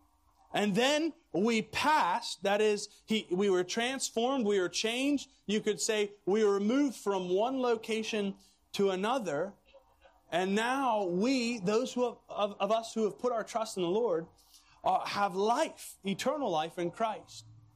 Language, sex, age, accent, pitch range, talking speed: English, male, 30-49, American, 185-235 Hz, 150 wpm